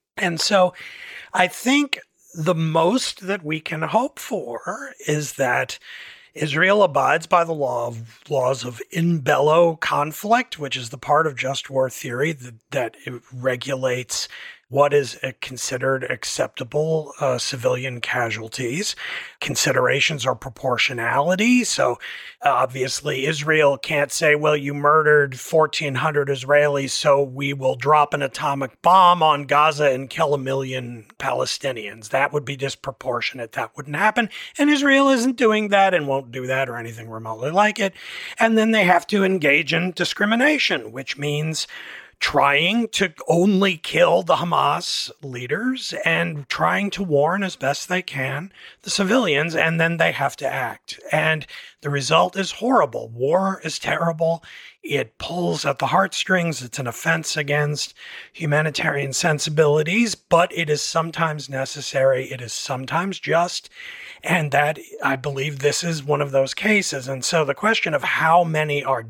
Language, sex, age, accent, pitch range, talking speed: English, male, 40-59, American, 135-180 Hz, 145 wpm